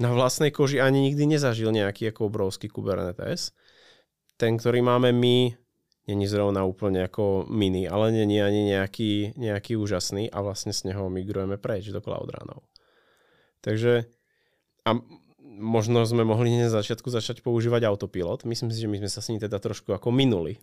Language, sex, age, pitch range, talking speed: Czech, male, 20-39, 105-160 Hz, 165 wpm